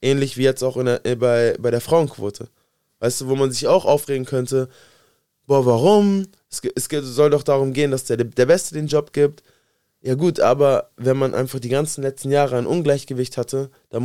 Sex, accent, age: male, German, 20-39